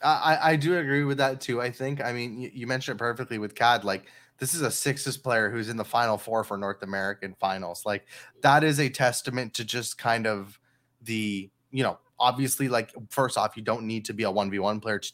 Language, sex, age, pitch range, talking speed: English, male, 20-39, 115-145 Hz, 230 wpm